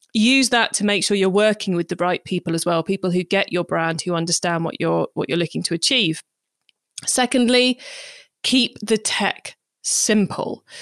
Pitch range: 180-215 Hz